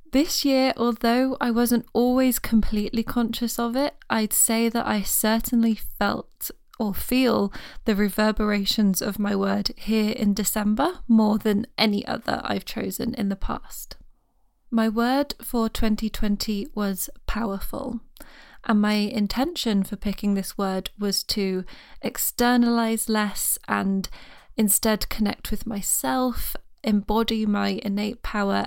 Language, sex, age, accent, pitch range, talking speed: English, female, 20-39, British, 205-235 Hz, 130 wpm